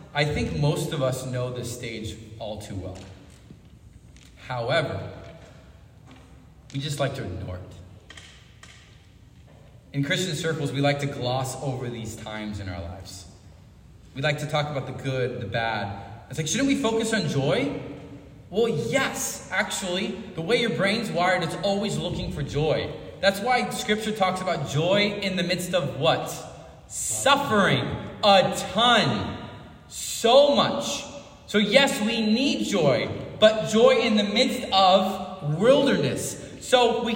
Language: English